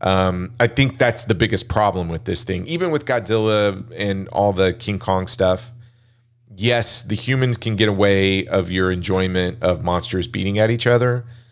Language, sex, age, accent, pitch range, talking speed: English, male, 40-59, American, 95-120 Hz, 175 wpm